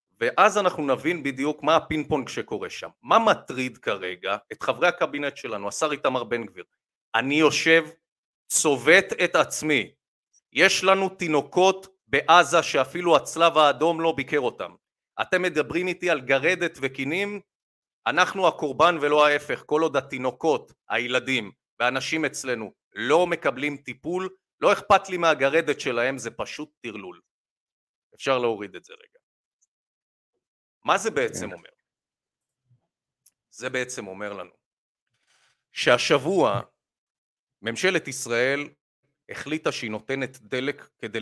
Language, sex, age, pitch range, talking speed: Hebrew, male, 40-59, 125-165 Hz, 120 wpm